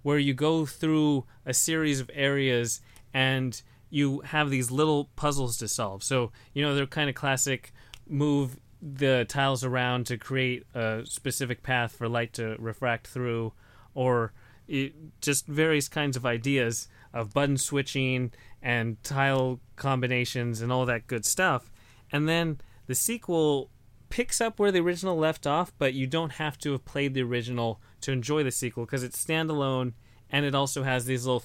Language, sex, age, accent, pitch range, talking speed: English, male, 30-49, American, 120-145 Hz, 165 wpm